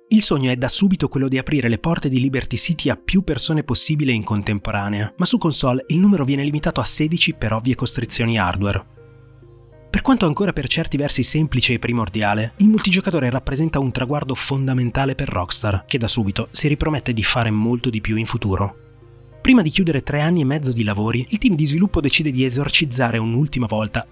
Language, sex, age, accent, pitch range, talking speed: Italian, male, 30-49, native, 115-145 Hz, 195 wpm